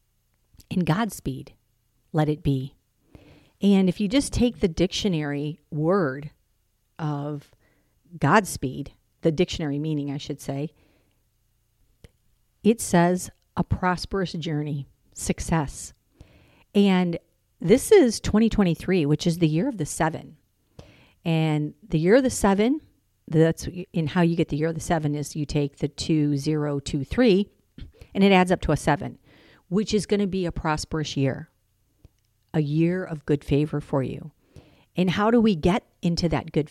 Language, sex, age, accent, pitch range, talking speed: English, female, 50-69, American, 140-180 Hz, 150 wpm